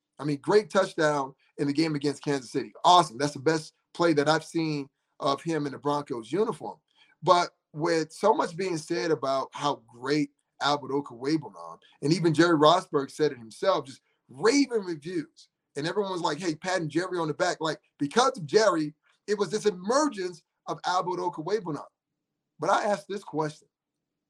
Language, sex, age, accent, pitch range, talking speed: English, male, 30-49, American, 145-170 Hz, 175 wpm